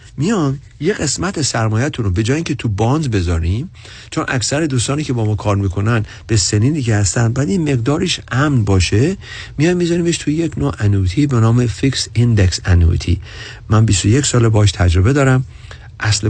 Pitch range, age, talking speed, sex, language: 105-135 Hz, 50-69, 170 wpm, male, Persian